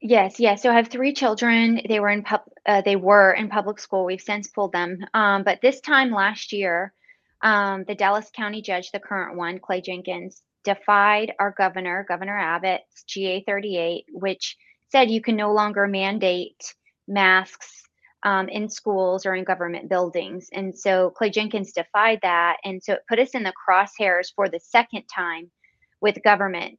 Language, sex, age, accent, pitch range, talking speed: English, female, 20-39, American, 190-220 Hz, 180 wpm